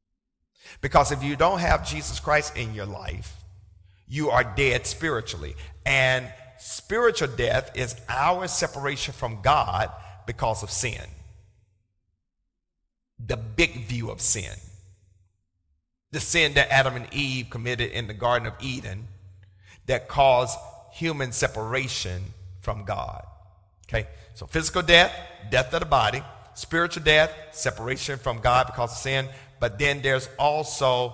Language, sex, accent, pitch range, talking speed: English, male, American, 95-125 Hz, 130 wpm